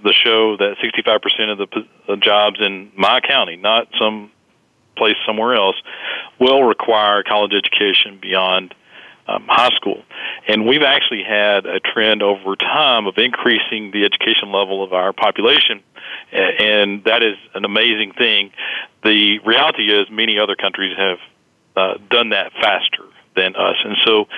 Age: 40-59